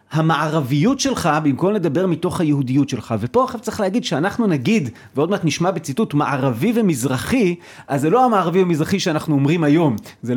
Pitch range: 140-210 Hz